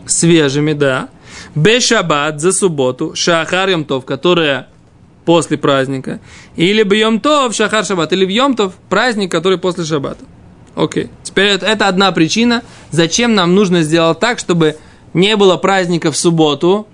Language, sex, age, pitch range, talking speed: Russian, male, 20-39, 155-200 Hz, 130 wpm